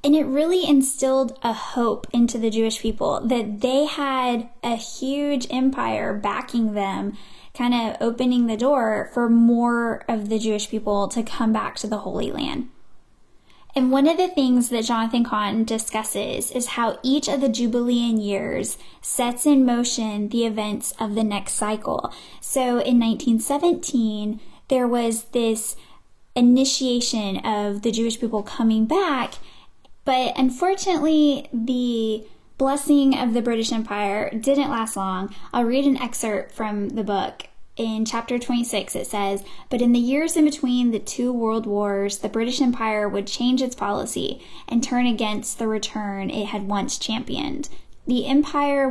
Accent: American